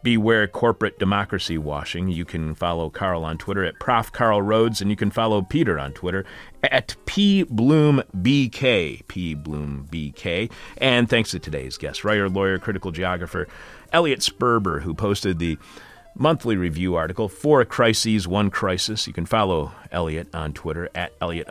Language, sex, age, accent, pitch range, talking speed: English, male, 40-59, American, 85-110 Hz, 150 wpm